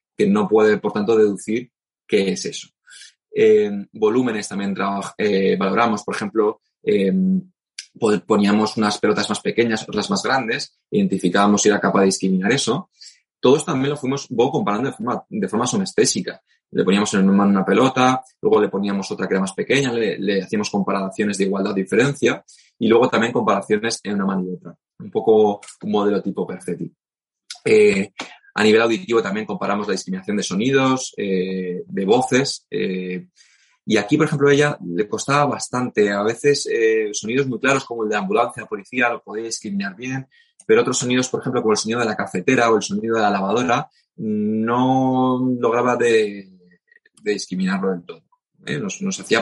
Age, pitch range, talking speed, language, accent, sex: 20-39, 100-145 Hz, 175 wpm, Spanish, Spanish, male